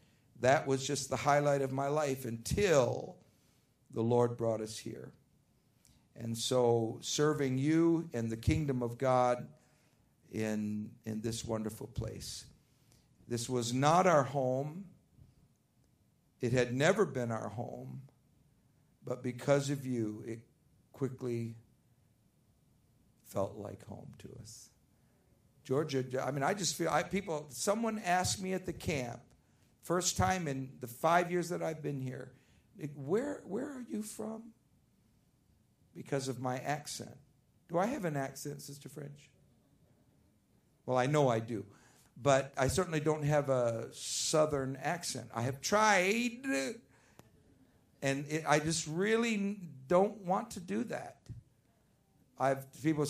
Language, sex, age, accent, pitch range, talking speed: English, male, 50-69, American, 120-165 Hz, 130 wpm